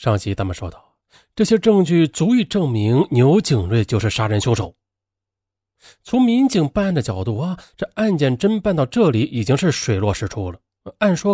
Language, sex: Chinese, male